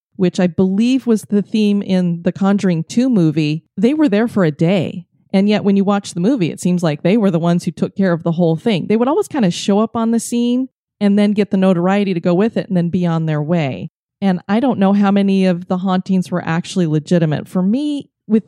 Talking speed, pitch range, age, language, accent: 255 wpm, 175-210 Hz, 30-49, English, American